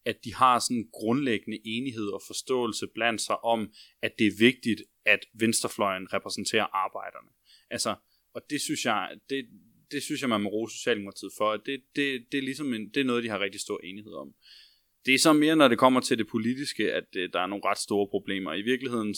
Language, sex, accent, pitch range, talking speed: Danish, male, native, 100-115 Hz, 210 wpm